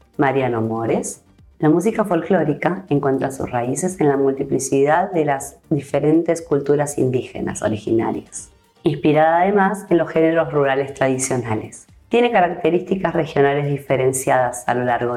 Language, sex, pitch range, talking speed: Spanish, female, 130-180 Hz, 125 wpm